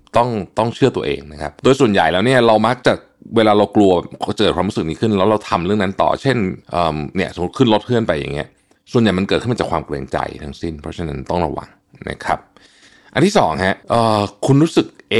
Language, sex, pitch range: Thai, male, 85-120 Hz